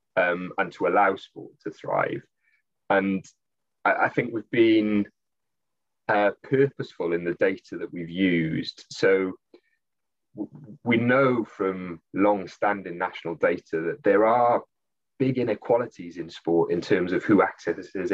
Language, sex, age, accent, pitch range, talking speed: English, male, 30-49, British, 95-135 Hz, 130 wpm